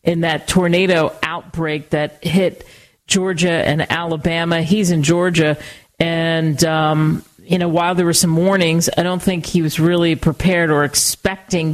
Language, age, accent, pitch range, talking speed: English, 40-59, American, 155-180 Hz, 155 wpm